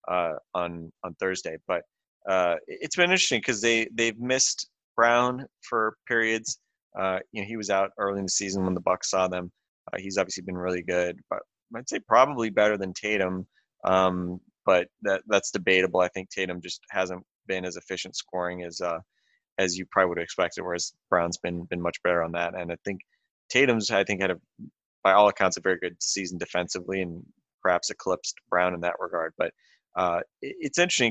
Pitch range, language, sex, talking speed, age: 90-100 Hz, English, male, 195 wpm, 20-39